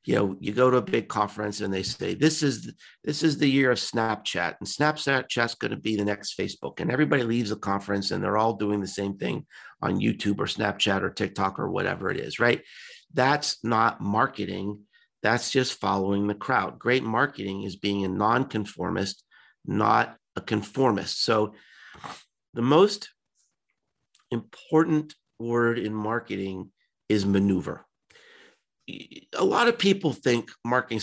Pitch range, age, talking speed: 100-130 Hz, 50-69, 160 wpm